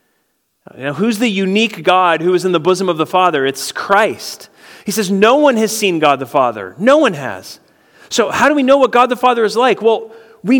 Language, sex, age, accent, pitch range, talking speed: English, male, 40-59, American, 185-250 Hz, 230 wpm